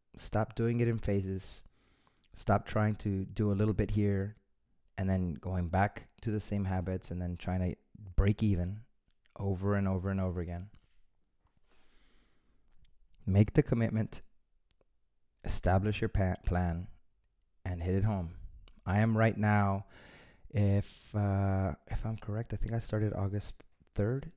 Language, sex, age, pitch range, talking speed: English, male, 20-39, 95-110 Hz, 145 wpm